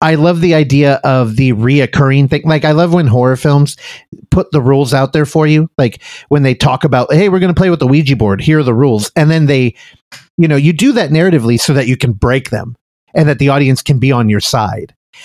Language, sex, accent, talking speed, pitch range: English, male, American, 250 wpm, 130-180 Hz